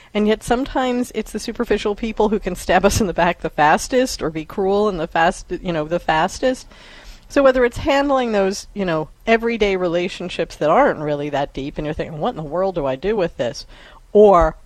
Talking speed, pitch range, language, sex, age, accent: 215 wpm, 175-240 Hz, English, female, 50-69, American